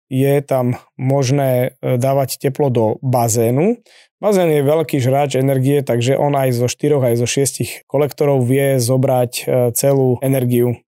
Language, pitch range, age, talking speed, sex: Slovak, 130-150 Hz, 20-39, 140 wpm, male